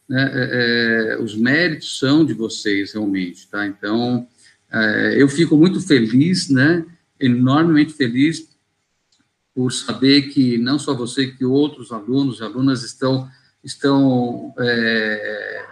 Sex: male